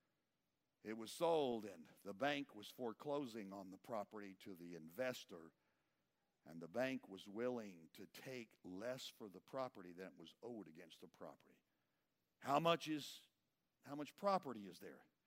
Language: English